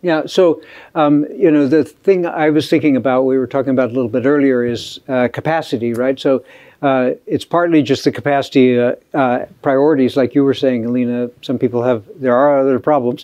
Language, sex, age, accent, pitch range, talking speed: English, male, 60-79, American, 120-145 Hz, 205 wpm